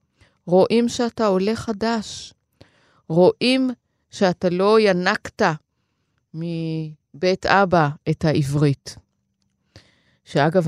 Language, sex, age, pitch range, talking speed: Hebrew, female, 30-49, 155-215 Hz, 75 wpm